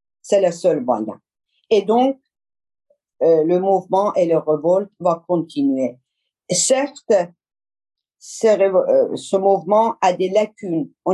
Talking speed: 125 wpm